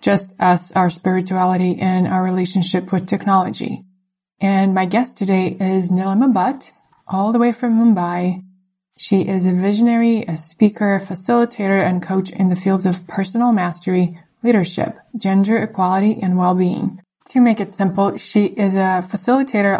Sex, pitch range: female, 185-205 Hz